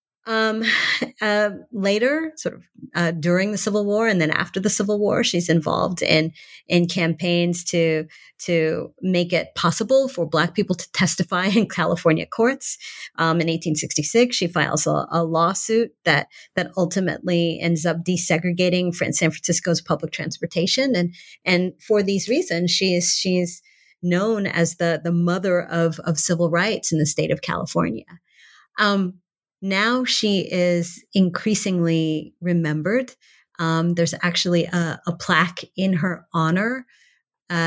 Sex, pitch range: female, 165-195 Hz